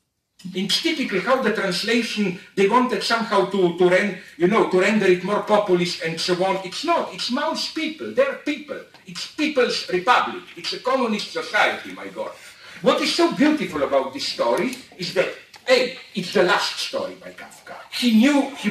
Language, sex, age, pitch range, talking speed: English, male, 50-69, 185-275 Hz, 180 wpm